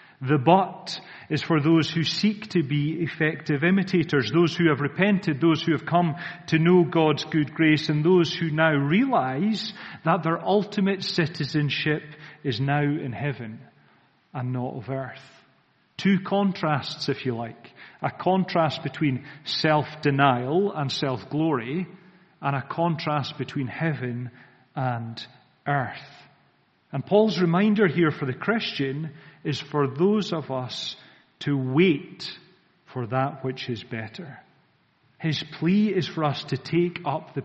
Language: English